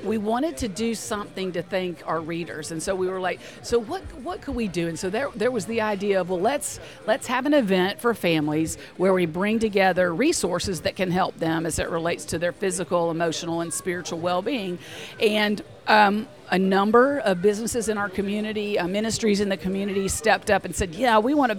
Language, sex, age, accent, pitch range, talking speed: English, female, 50-69, American, 180-220 Hz, 215 wpm